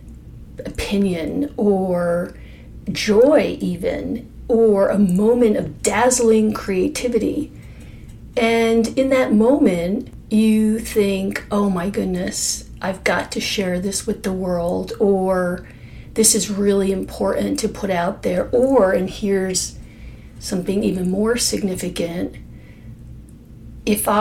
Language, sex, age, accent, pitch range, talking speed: English, female, 40-59, American, 190-230 Hz, 110 wpm